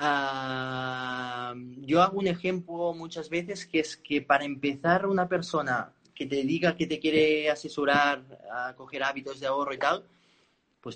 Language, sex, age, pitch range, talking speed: Spanish, male, 30-49, 125-165 Hz, 160 wpm